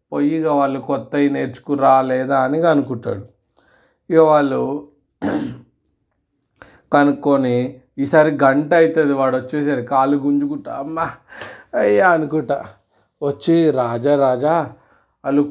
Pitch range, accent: 130-150 Hz, native